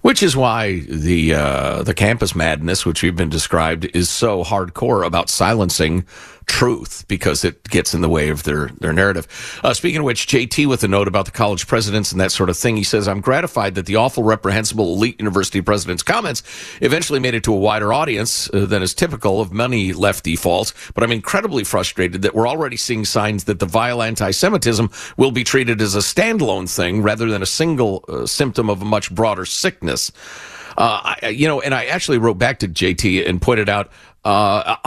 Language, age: English, 50-69